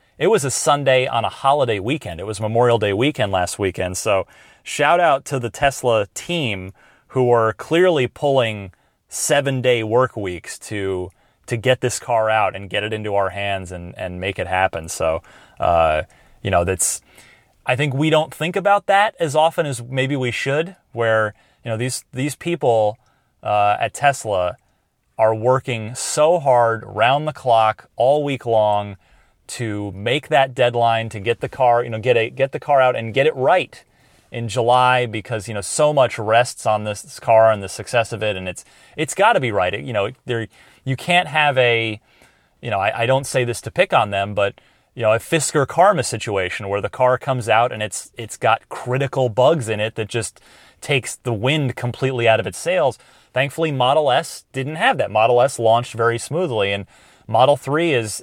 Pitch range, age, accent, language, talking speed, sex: 105-135 Hz, 30-49, American, English, 195 wpm, male